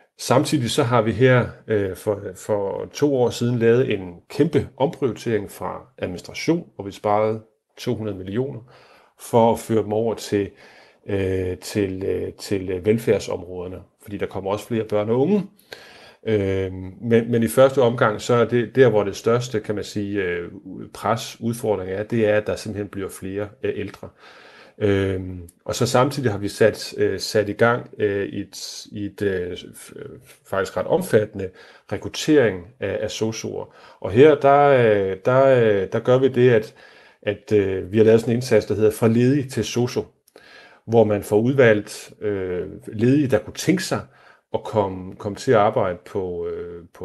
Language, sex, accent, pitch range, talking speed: Danish, male, native, 100-125 Hz, 160 wpm